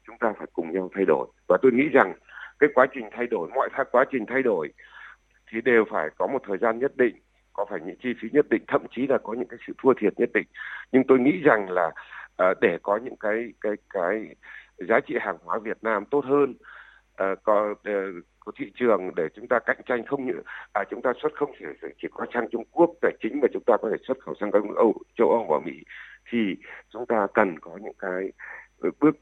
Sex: male